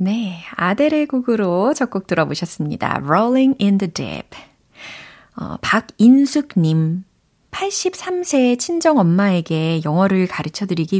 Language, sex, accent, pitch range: Korean, female, native, 160-230 Hz